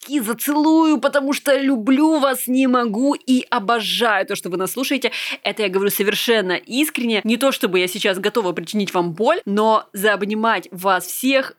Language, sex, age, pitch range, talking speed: Russian, female, 20-39, 175-235 Hz, 165 wpm